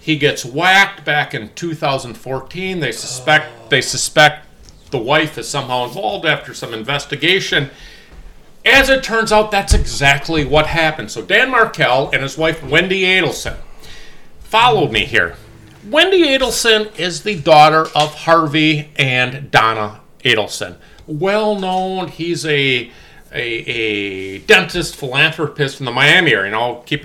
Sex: male